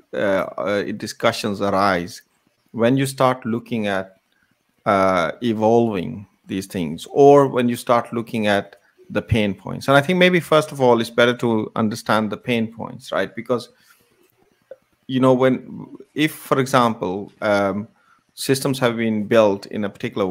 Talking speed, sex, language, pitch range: 155 wpm, male, English, 100-120 Hz